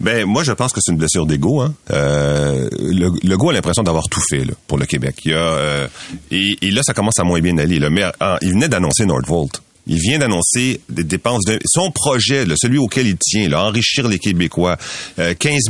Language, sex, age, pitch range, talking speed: French, male, 40-59, 85-120 Hz, 220 wpm